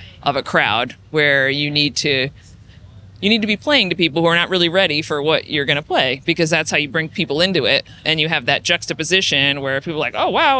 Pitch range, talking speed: 120-160 Hz, 250 wpm